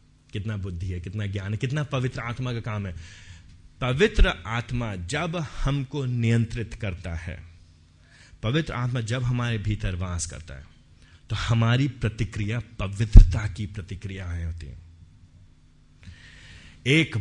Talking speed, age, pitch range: 130 wpm, 30-49, 90-120 Hz